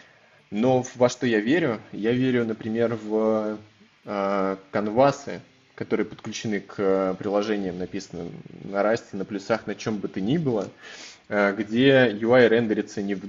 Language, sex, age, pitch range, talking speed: Russian, male, 20-39, 100-120 Hz, 145 wpm